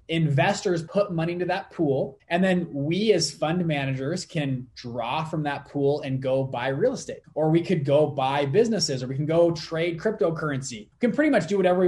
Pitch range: 140-180 Hz